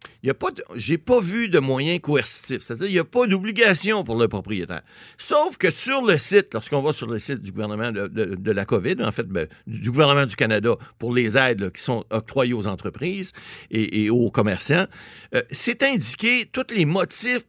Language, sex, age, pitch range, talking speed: French, male, 60-79, 120-190 Hz, 200 wpm